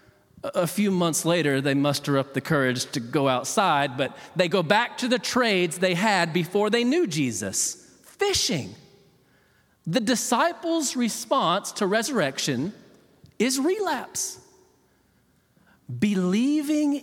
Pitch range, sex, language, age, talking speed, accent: 170-275 Hz, male, English, 40-59, 120 wpm, American